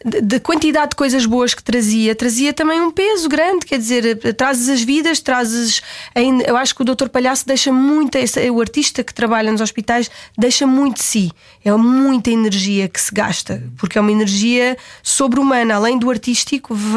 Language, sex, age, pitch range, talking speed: Portuguese, female, 20-39, 230-280 Hz, 185 wpm